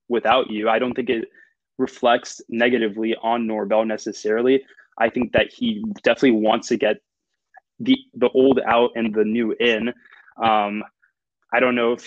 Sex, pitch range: male, 110-125 Hz